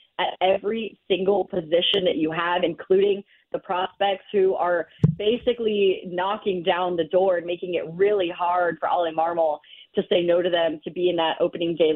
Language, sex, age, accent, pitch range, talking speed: English, female, 30-49, American, 185-225 Hz, 180 wpm